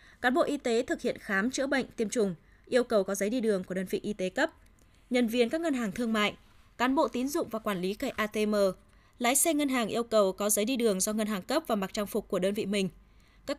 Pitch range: 210-255 Hz